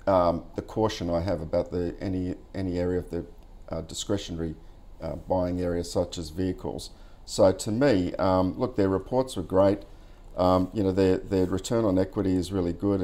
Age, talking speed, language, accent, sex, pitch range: 50-69, 185 wpm, English, Australian, male, 90-100 Hz